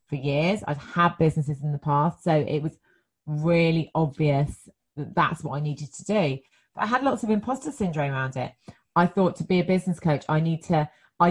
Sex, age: female, 30-49